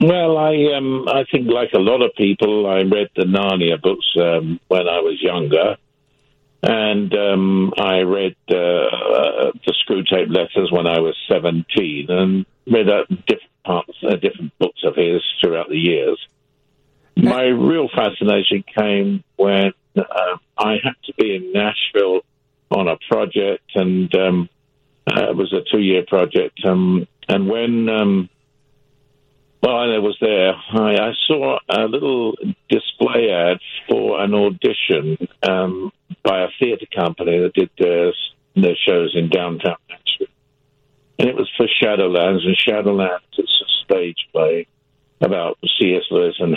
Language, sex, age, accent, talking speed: English, male, 50-69, British, 150 wpm